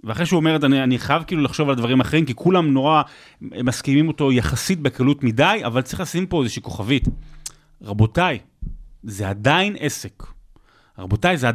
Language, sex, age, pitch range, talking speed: Hebrew, male, 30-49, 135-205 Hz, 160 wpm